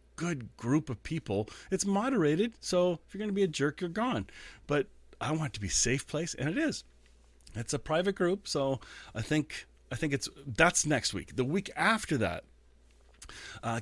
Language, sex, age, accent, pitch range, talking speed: English, male, 40-59, American, 105-145 Hz, 210 wpm